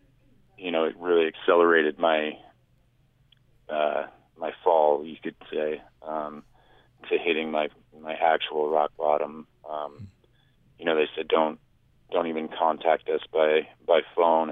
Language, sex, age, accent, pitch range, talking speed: English, male, 30-49, American, 75-110 Hz, 135 wpm